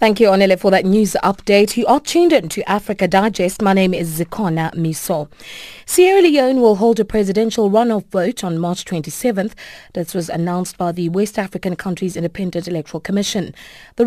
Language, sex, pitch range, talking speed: English, female, 170-215 Hz, 180 wpm